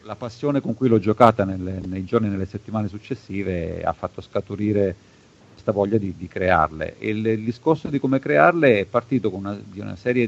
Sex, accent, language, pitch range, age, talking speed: male, native, Italian, 95-115 Hz, 50-69, 205 wpm